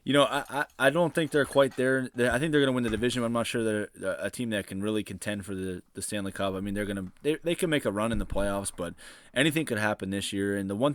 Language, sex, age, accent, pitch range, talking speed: English, male, 20-39, American, 100-120 Hz, 310 wpm